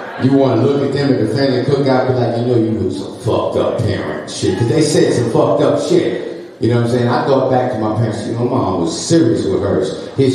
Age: 40-59